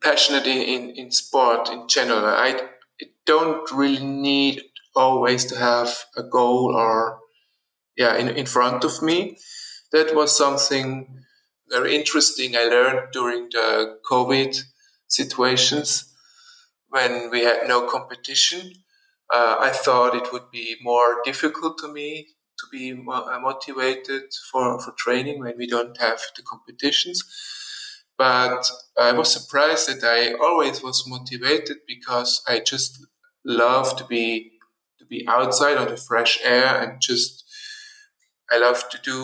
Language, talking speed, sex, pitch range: English, 135 wpm, male, 125-150 Hz